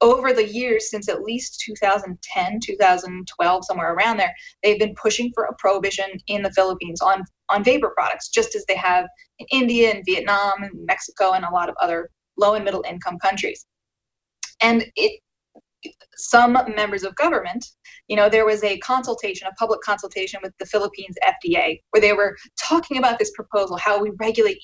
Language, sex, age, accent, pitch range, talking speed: English, female, 20-39, American, 195-245 Hz, 180 wpm